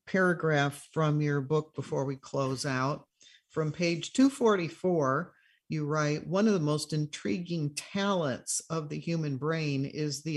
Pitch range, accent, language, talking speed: 140-175 Hz, American, English, 145 wpm